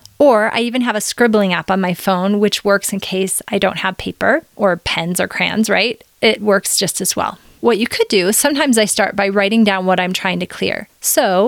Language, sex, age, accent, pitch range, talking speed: English, female, 30-49, American, 190-225 Hz, 230 wpm